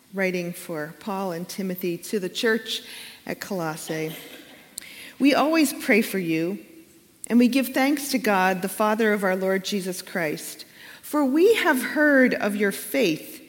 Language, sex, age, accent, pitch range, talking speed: English, female, 40-59, American, 185-255 Hz, 155 wpm